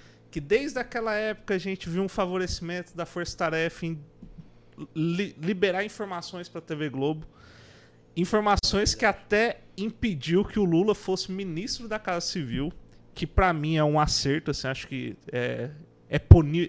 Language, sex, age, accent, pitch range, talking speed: Portuguese, male, 30-49, Brazilian, 150-195 Hz, 160 wpm